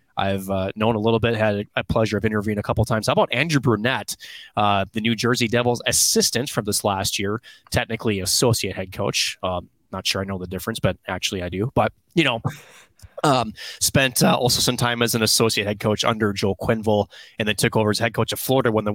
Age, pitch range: 20-39, 105-125 Hz